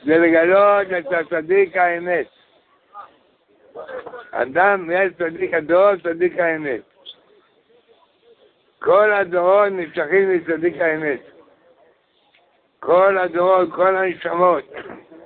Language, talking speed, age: Hebrew, 80 wpm, 60-79